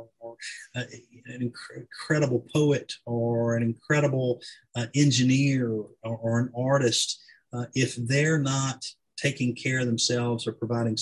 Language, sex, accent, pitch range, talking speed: English, male, American, 115-130 Hz, 125 wpm